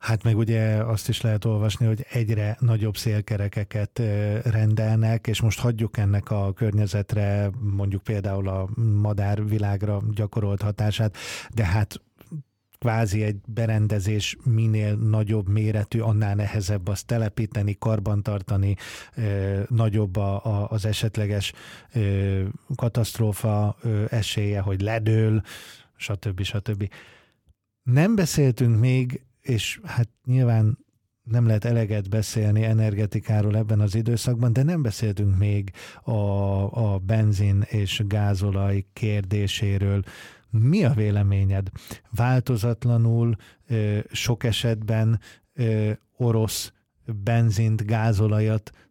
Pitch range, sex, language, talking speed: 105-115 Hz, male, Hungarian, 100 wpm